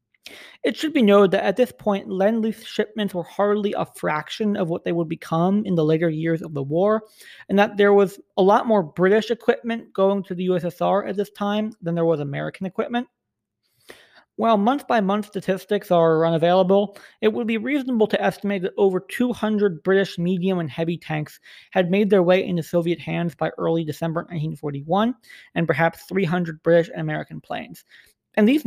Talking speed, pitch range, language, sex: 180 wpm, 160-205 Hz, English, male